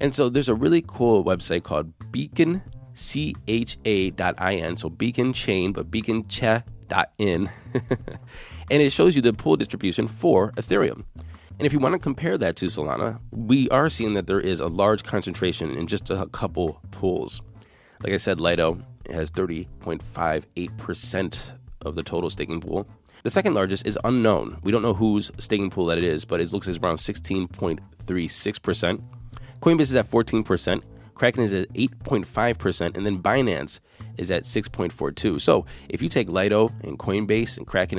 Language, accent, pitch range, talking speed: English, American, 95-120 Hz, 160 wpm